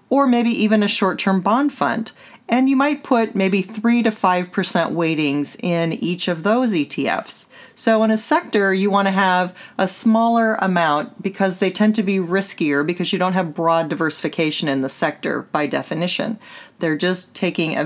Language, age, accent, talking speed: English, 40-59, American, 175 wpm